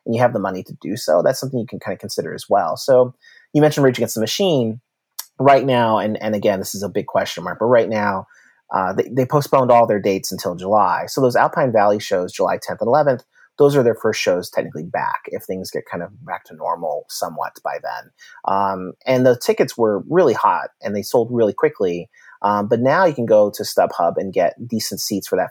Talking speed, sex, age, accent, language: 235 wpm, male, 30-49, American, English